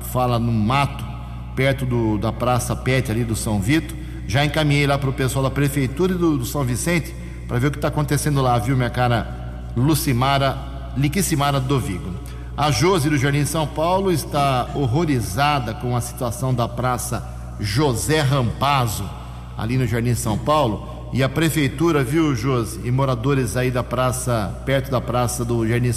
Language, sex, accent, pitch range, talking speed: English, male, Brazilian, 120-150 Hz, 170 wpm